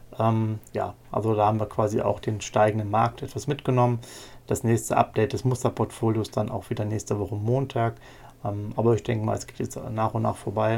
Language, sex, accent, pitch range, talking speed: German, male, German, 110-125 Hz, 200 wpm